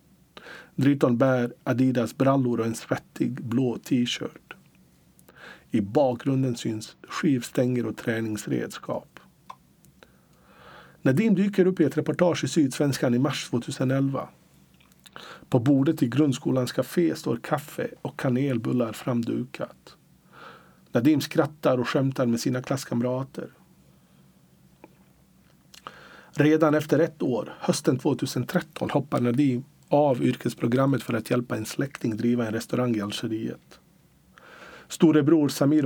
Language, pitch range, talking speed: Swedish, 120-145 Hz, 110 wpm